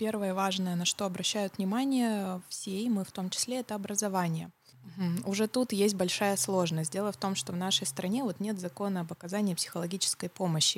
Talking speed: 195 wpm